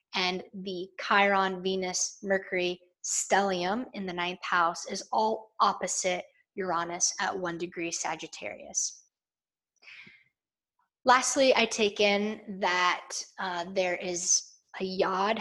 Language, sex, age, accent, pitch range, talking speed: English, female, 20-39, American, 180-215 Hz, 110 wpm